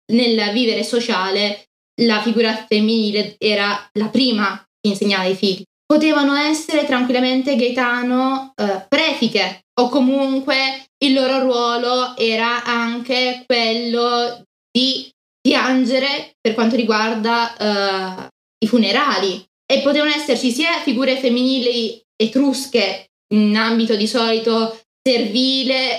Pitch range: 225-260 Hz